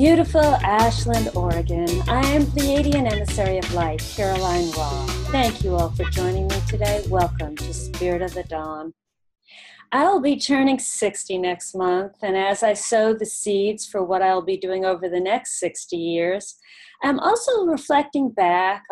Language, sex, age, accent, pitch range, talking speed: English, female, 40-59, American, 180-250 Hz, 160 wpm